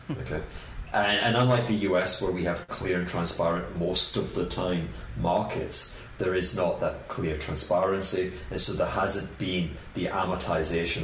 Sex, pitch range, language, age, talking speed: male, 80-110 Hz, English, 40-59, 165 wpm